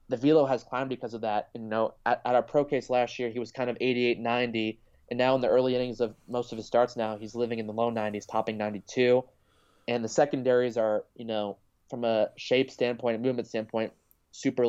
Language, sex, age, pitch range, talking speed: English, male, 20-39, 110-130 Hz, 230 wpm